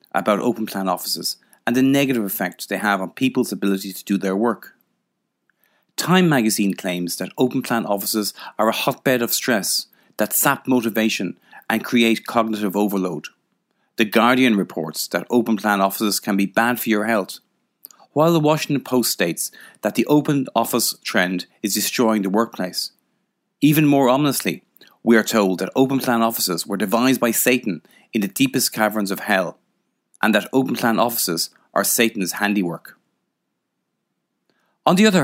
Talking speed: 160 wpm